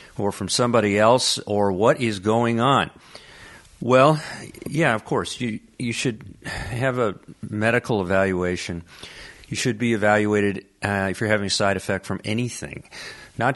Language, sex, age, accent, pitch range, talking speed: English, male, 50-69, American, 95-125 Hz, 150 wpm